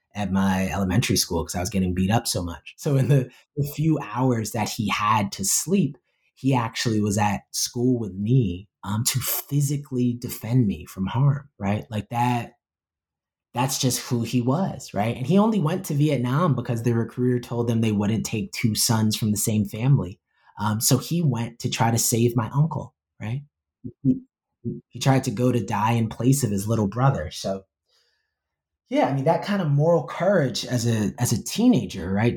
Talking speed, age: 195 wpm, 20-39